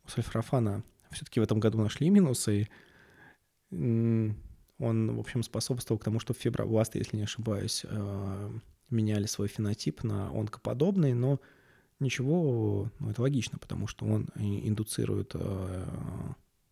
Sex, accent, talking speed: male, native, 115 wpm